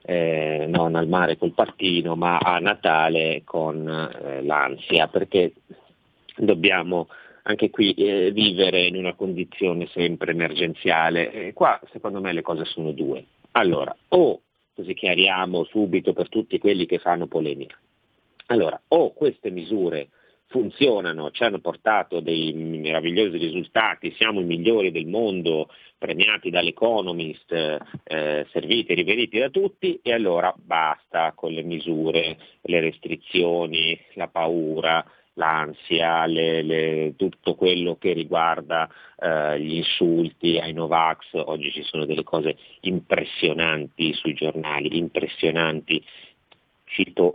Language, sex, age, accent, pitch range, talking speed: Italian, male, 40-59, native, 80-90 Hz, 125 wpm